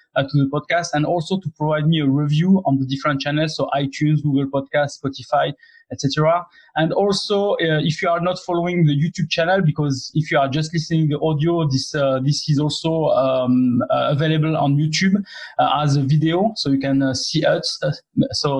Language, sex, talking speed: English, male, 200 wpm